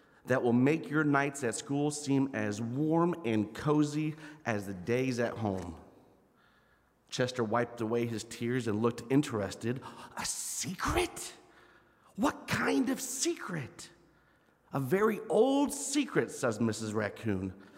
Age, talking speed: 40-59, 130 wpm